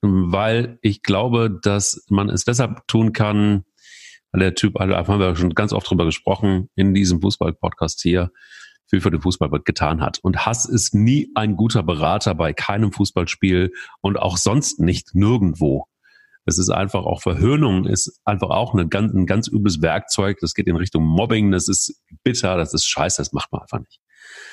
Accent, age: German, 40-59